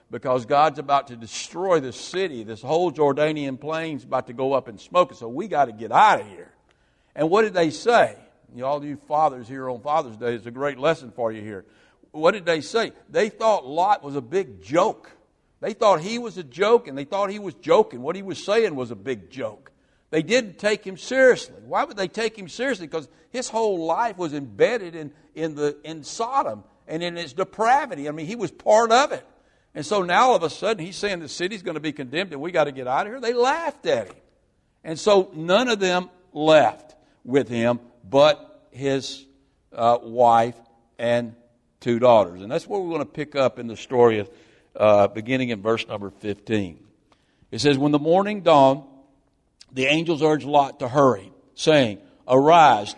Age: 60-79